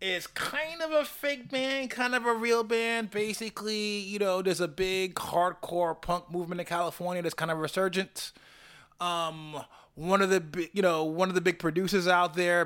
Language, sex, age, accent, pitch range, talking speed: English, male, 20-39, American, 155-195 Hz, 185 wpm